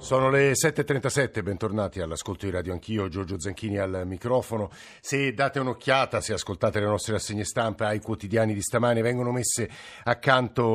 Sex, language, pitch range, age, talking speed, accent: male, Italian, 105-125 Hz, 50-69, 155 wpm, native